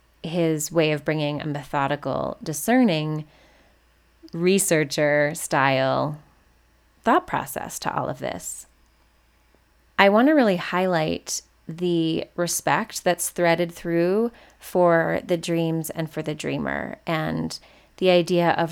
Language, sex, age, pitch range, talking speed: English, female, 20-39, 150-175 Hz, 110 wpm